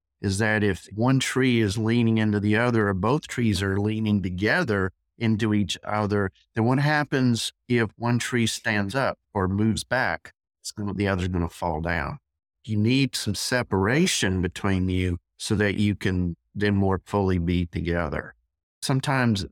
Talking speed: 170 wpm